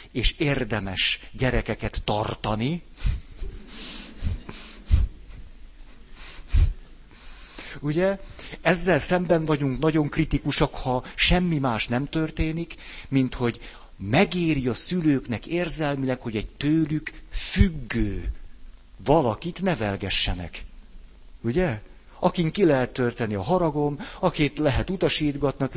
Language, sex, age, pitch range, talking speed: Hungarian, male, 60-79, 95-155 Hz, 85 wpm